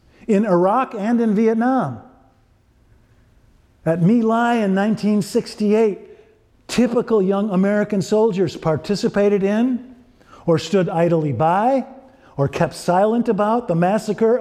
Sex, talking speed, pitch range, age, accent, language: male, 110 wpm, 160-210 Hz, 50-69, American, English